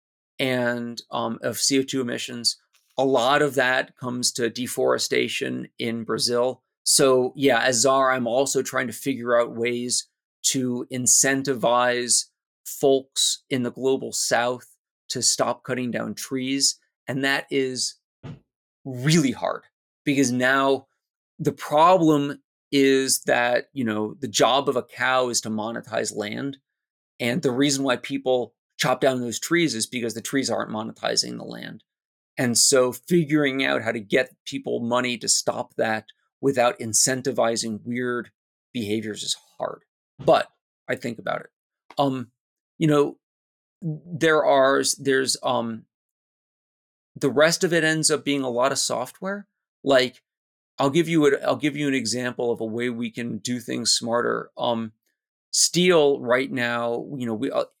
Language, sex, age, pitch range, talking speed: English, male, 30-49, 120-140 Hz, 150 wpm